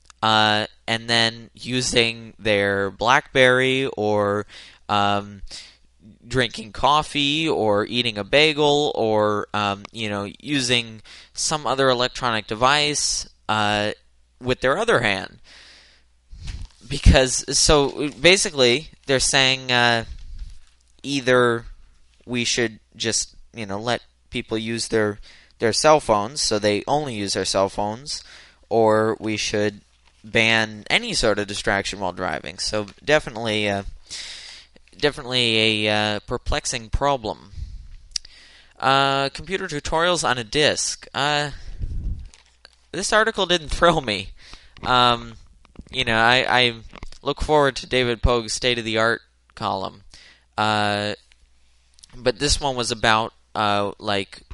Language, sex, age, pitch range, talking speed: English, male, 10-29, 100-130 Hz, 115 wpm